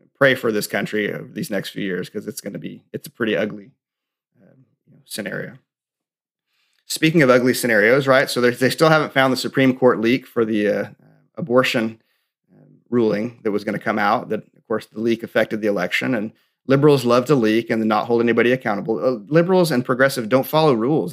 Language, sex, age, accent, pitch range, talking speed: English, male, 30-49, American, 110-130 Hz, 200 wpm